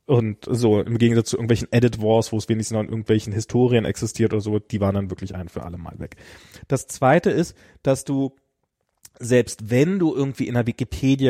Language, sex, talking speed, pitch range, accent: German, male, 205 wpm, 110-130 Hz, German